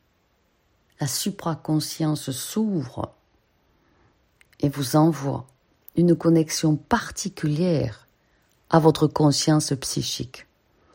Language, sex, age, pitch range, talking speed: French, female, 50-69, 130-170 Hz, 70 wpm